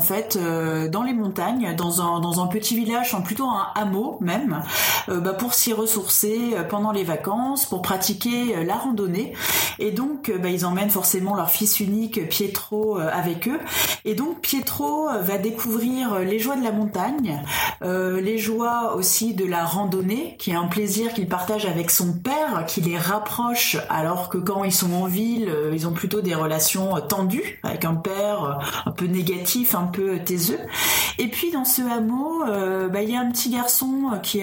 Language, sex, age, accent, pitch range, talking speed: French, female, 30-49, French, 185-230 Hz, 185 wpm